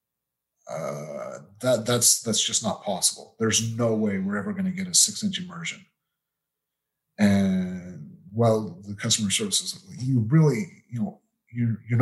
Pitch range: 105-175 Hz